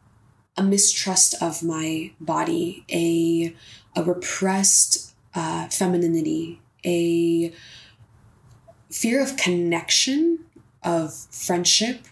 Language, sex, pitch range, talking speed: English, female, 160-185 Hz, 75 wpm